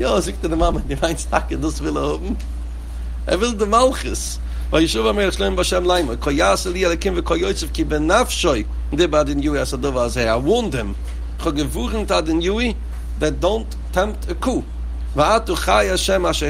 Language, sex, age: English, male, 60-79